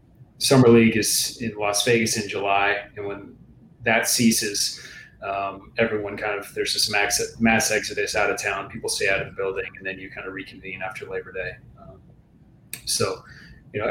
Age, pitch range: 30-49, 100-120 Hz